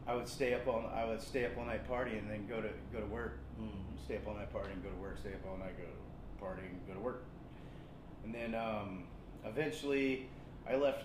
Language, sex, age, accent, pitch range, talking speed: English, male, 30-49, American, 110-135 Hz, 245 wpm